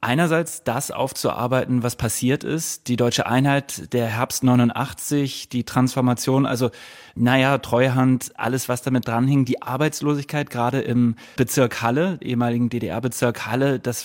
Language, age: German, 30-49